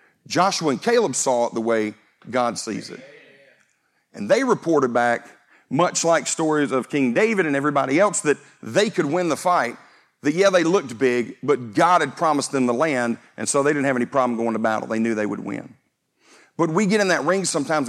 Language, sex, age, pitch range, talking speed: English, male, 50-69, 135-215 Hz, 210 wpm